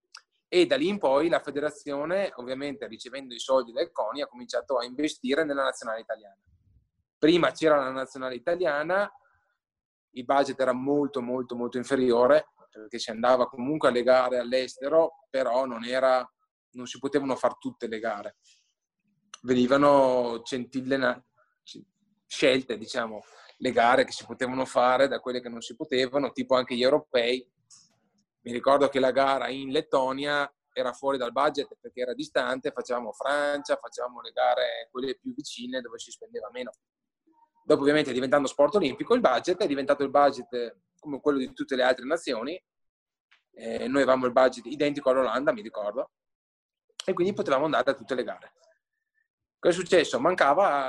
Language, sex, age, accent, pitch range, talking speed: Italian, male, 20-39, native, 125-175 Hz, 160 wpm